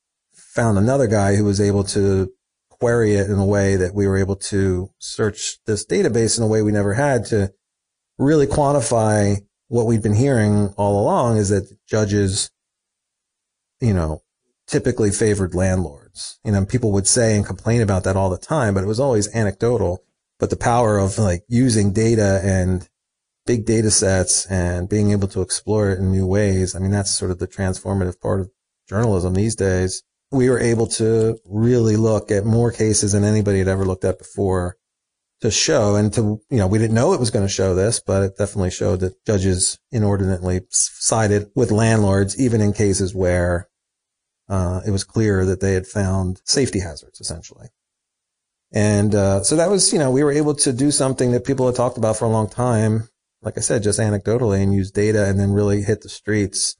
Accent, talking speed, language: American, 195 wpm, English